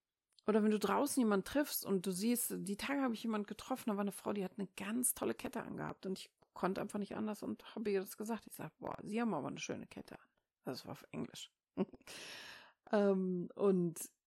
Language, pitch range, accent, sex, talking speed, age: German, 180-220 Hz, German, female, 220 wpm, 40-59